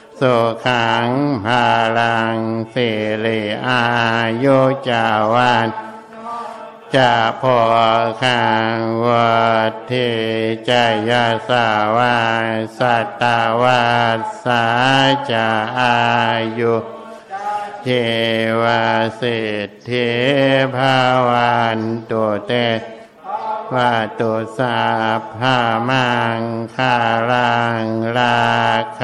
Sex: male